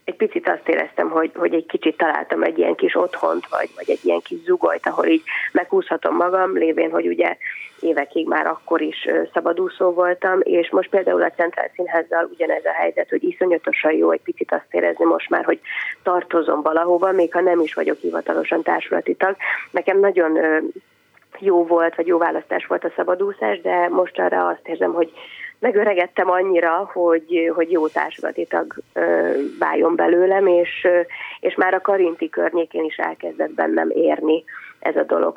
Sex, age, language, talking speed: female, 30-49, Hungarian, 170 wpm